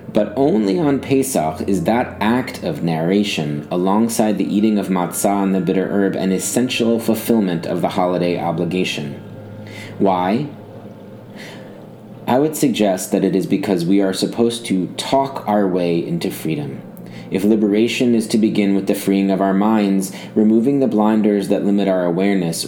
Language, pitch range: English, 90-105 Hz